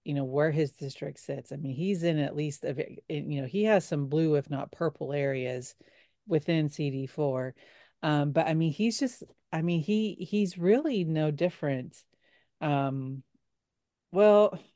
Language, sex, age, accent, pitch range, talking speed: English, female, 30-49, American, 140-175 Hz, 165 wpm